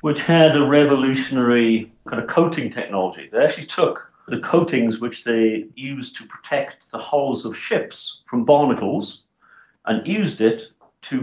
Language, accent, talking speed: English, British, 150 wpm